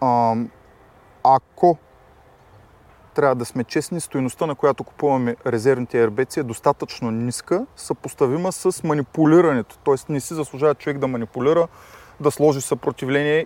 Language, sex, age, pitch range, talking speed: Bulgarian, male, 30-49, 120-155 Hz, 125 wpm